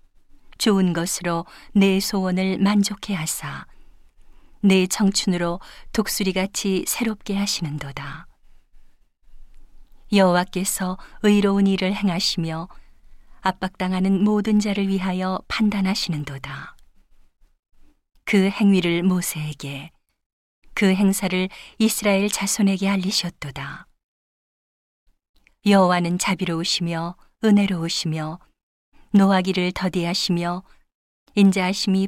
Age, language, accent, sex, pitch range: 40-59, Korean, native, female, 170-200 Hz